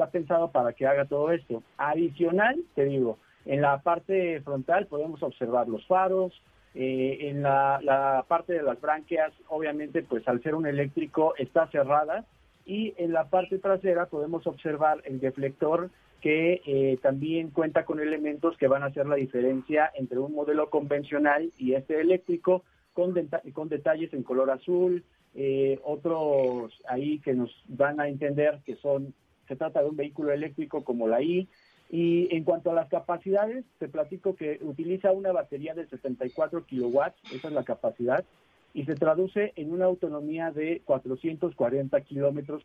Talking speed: 160 wpm